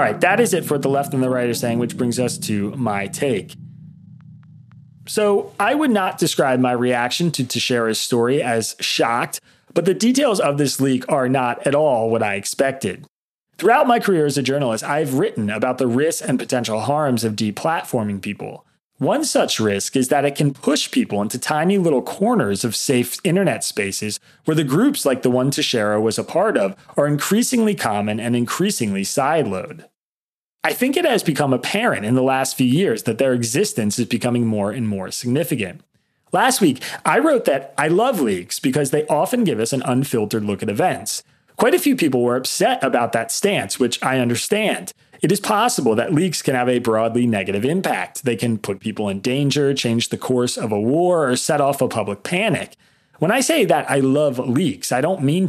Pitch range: 115-155 Hz